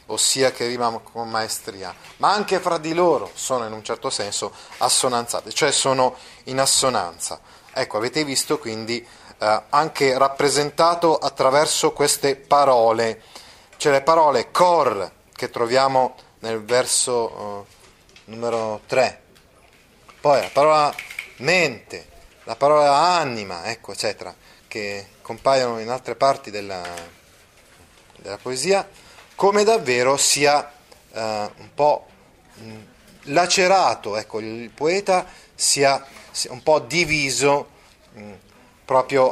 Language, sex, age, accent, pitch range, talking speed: Italian, male, 30-49, native, 115-155 Hz, 115 wpm